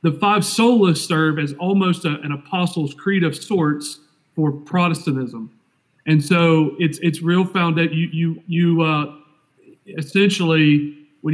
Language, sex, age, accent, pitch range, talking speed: English, male, 40-59, American, 140-165 Hz, 145 wpm